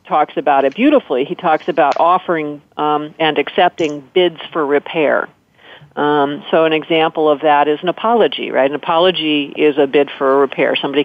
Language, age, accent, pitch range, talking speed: English, 50-69, American, 145-185 Hz, 180 wpm